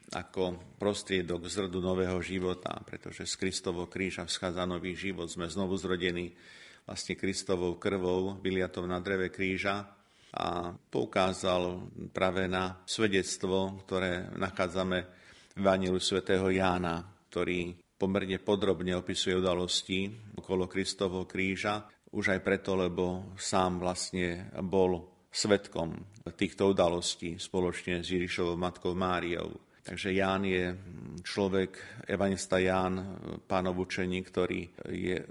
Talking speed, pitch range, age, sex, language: 110 wpm, 90-100 Hz, 50-69, male, Slovak